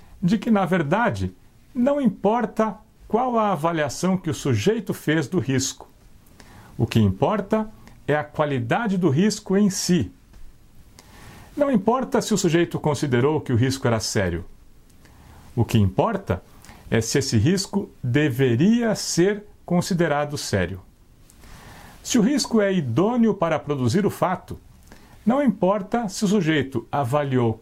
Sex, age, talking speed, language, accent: male, 60-79, 135 wpm, Portuguese, Brazilian